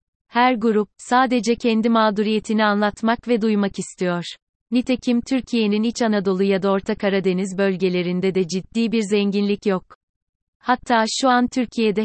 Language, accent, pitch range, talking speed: Turkish, native, 195-225 Hz, 135 wpm